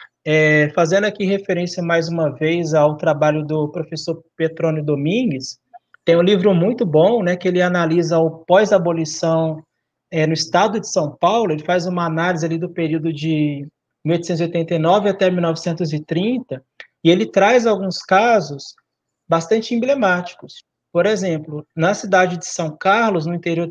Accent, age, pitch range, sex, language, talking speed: Brazilian, 20-39, 160-200 Hz, male, Portuguese, 145 wpm